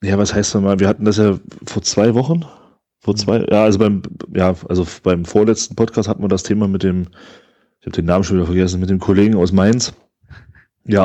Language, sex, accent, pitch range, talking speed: German, male, German, 95-110 Hz, 225 wpm